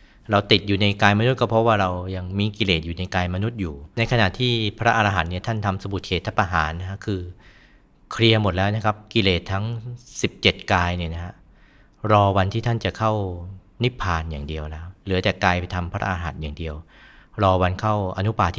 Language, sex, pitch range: Thai, male, 90-110 Hz